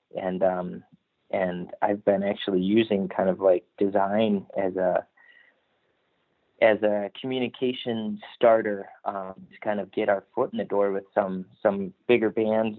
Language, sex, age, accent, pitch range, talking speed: English, male, 30-49, American, 100-110 Hz, 150 wpm